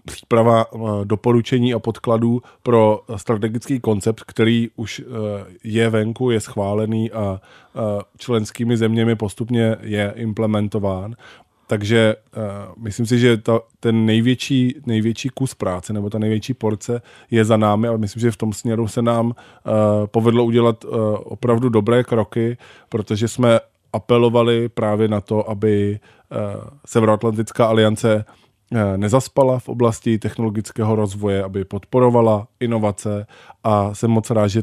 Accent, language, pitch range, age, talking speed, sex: native, Czech, 105-115 Hz, 20-39, 120 wpm, male